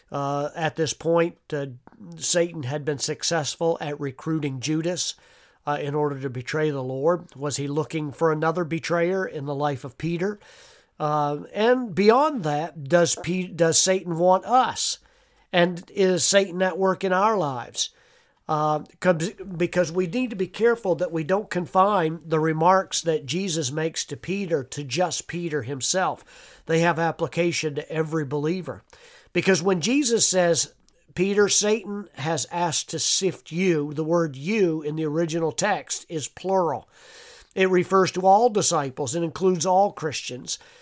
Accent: American